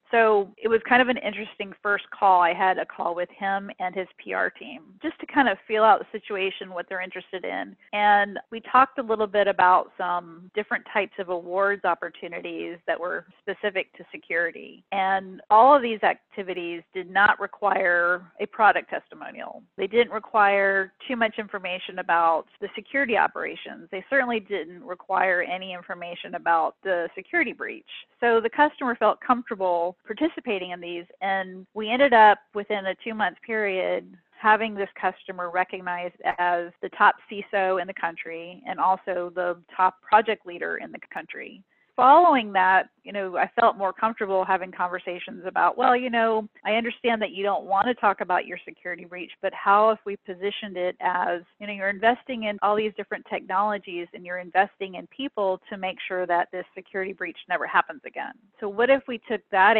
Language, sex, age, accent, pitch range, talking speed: English, female, 40-59, American, 180-215 Hz, 180 wpm